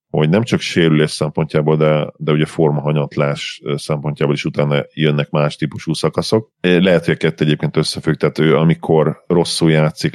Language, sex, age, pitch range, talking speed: Hungarian, male, 40-59, 75-80 Hz, 150 wpm